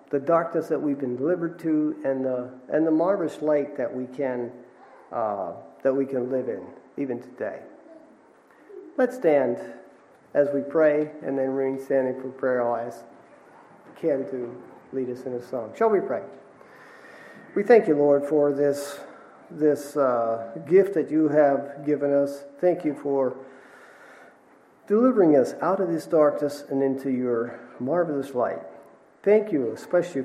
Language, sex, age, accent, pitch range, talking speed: English, male, 40-59, American, 135-170 Hz, 155 wpm